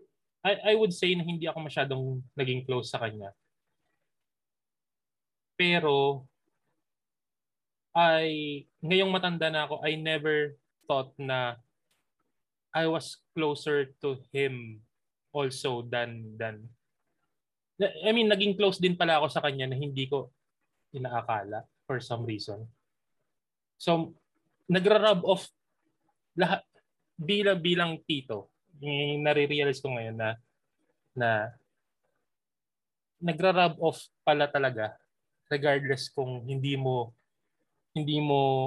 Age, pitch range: 20-39, 130-160 Hz